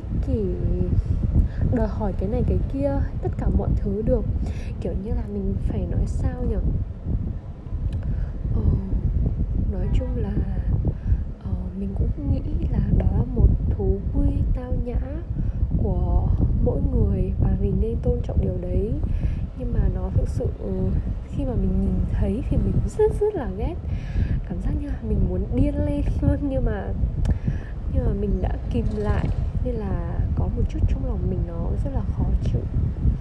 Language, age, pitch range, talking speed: Vietnamese, 10-29, 85-100 Hz, 165 wpm